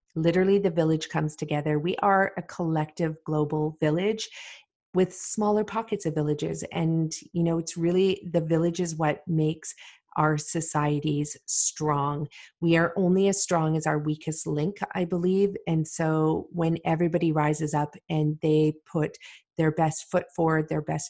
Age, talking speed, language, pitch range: 40-59, 155 wpm, English, 150-175 Hz